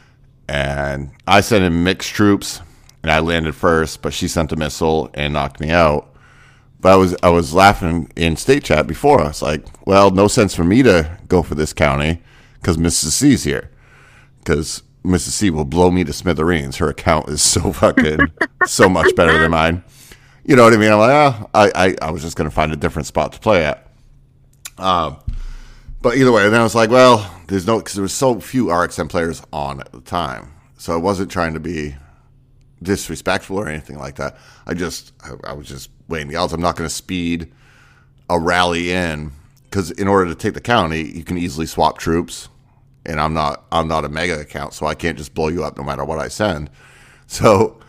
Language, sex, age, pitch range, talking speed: English, male, 40-59, 75-95 Hz, 205 wpm